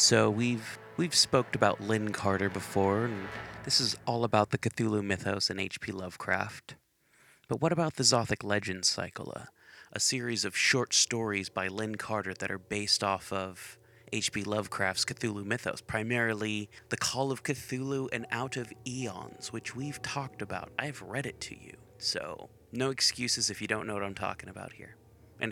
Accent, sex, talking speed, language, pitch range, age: American, male, 175 wpm, English, 100-125 Hz, 30-49